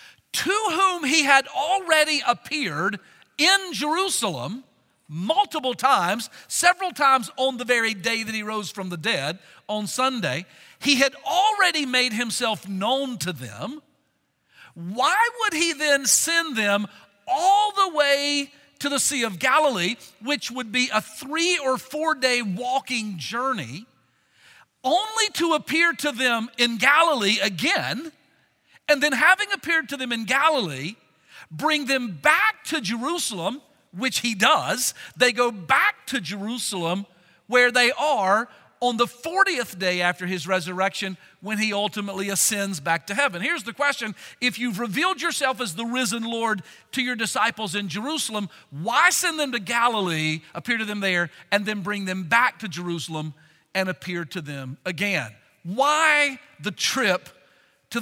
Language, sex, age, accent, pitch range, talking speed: English, male, 50-69, American, 195-295 Hz, 150 wpm